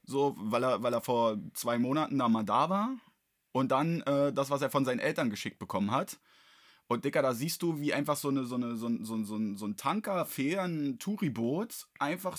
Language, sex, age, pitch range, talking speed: German, male, 20-39, 125-160 Hz, 220 wpm